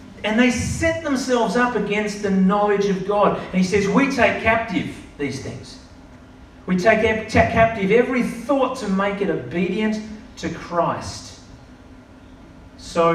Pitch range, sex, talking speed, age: 145-205 Hz, male, 145 wpm, 40-59